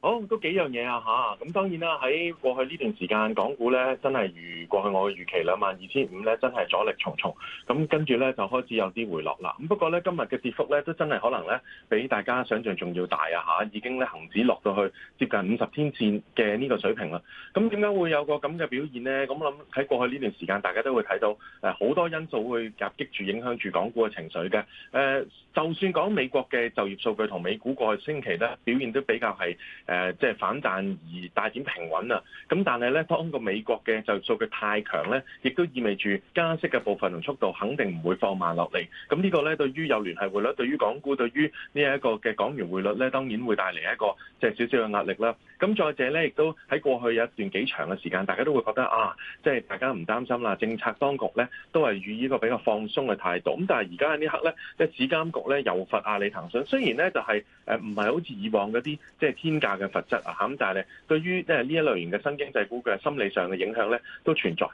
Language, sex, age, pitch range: Chinese, male, 30-49, 105-150 Hz